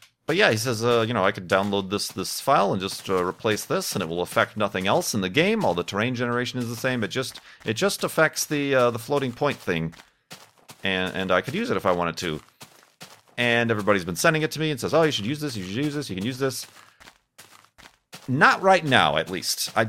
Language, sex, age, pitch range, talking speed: English, male, 40-59, 90-135 Hz, 250 wpm